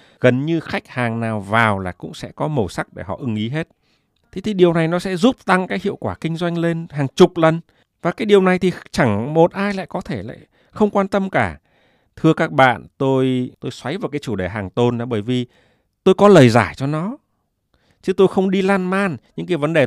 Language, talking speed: Vietnamese, 245 wpm